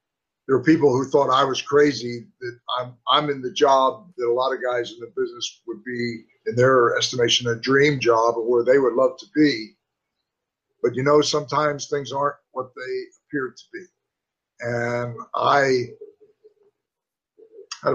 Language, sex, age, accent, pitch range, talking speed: English, male, 50-69, American, 120-150 Hz, 170 wpm